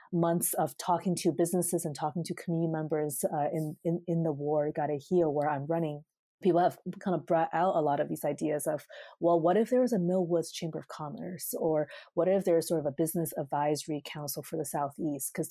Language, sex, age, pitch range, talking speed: English, female, 30-49, 160-195 Hz, 225 wpm